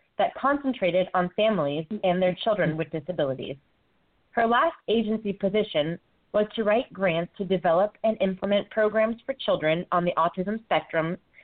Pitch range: 175-215 Hz